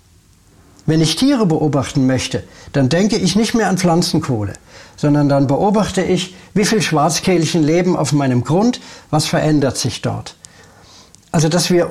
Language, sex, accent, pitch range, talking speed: German, male, German, 135-180 Hz, 150 wpm